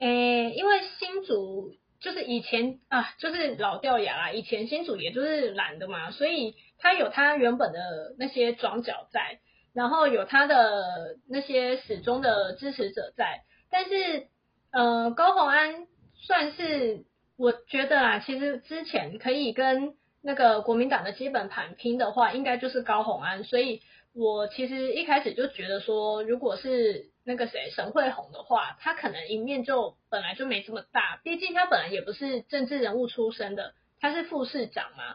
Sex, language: female, Chinese